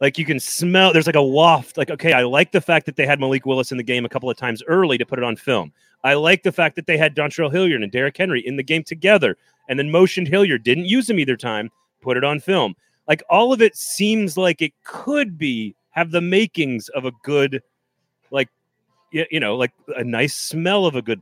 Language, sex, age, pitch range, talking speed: English, male, 30-49, 125-175 Hz, 245 wpm